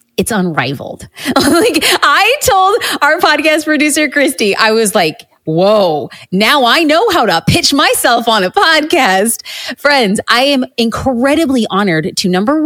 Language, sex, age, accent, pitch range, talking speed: English, female, 30-49, American, 175-235 Hz, 140 wpm